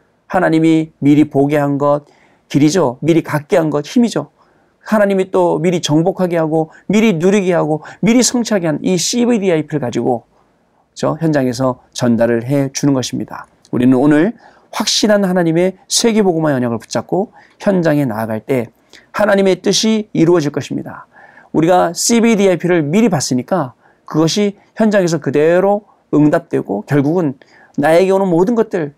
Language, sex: Korean, male